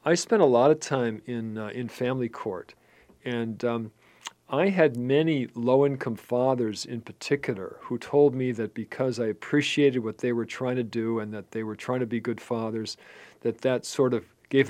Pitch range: 120-145 Hz